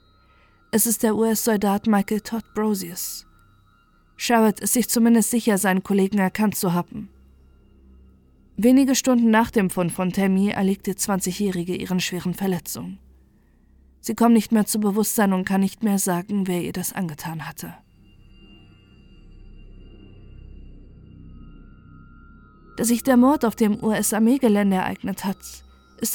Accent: German